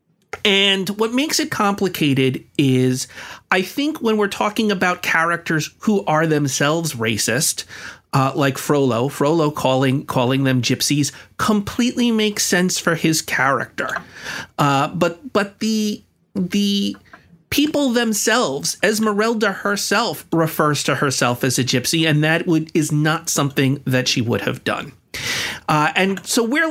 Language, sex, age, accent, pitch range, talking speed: English, male, 40-59, American, 140-205 Hz, 135 wpm